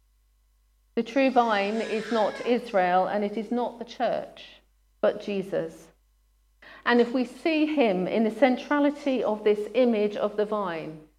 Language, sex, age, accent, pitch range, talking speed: English, female, 40-59, British, 160-240 Hz, 150 wpm